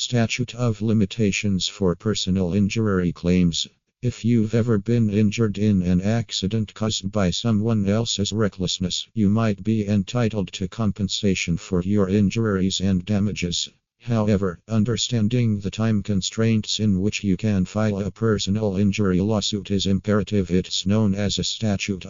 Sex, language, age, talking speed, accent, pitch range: male, English, 50-69, 140 wpm, American, 95-110 Hz